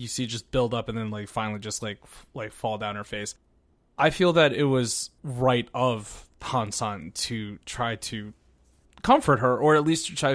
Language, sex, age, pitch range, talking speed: English, male, 20-39, 110-130 Hz, 205 wpm